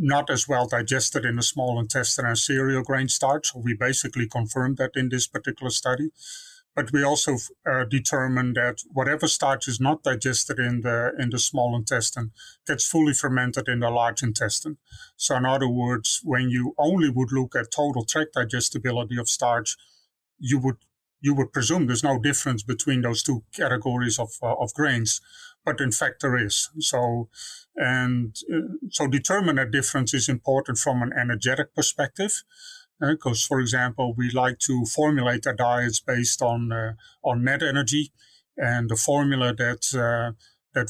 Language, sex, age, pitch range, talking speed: English, male, 30-49, 120-140 Hz, 170 wpm